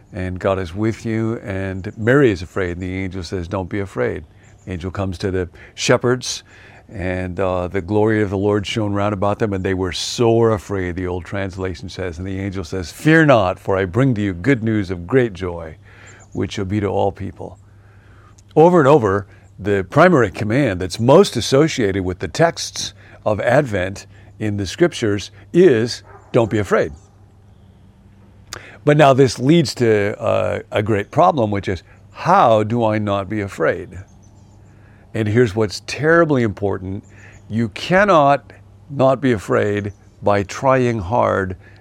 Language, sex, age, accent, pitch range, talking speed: English, male, 50-69, American, 95-120 Hz, 165 wpm